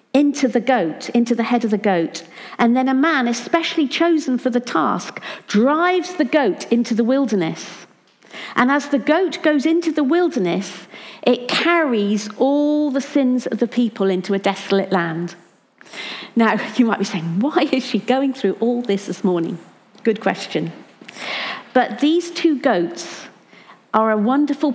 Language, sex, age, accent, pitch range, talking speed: English, female, 50-69, British, 195-270 Hz, 160 wpm